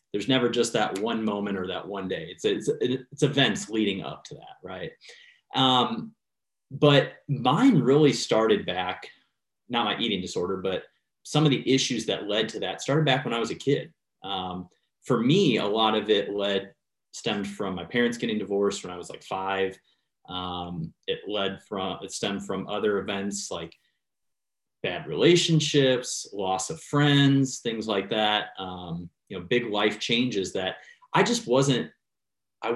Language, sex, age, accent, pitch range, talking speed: English, male, 30-49, American, 100-140 Hz, 170 wpm